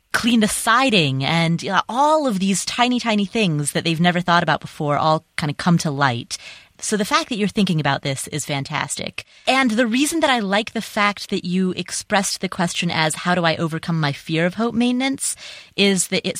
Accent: American